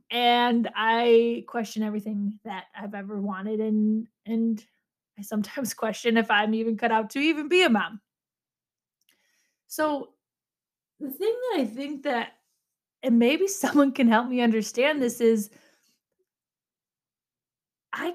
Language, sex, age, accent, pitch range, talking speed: English, female, 20-39, American, 215-280 Hz, 130 wpm